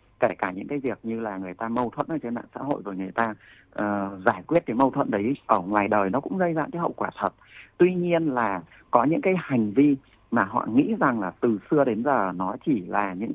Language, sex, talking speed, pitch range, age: Vietnamese, male, 260 wpm, 105-135 Hz, 30-49